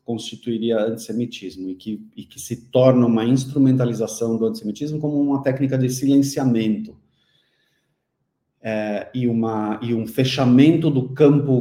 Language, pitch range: Portuguese, 120-150 Hz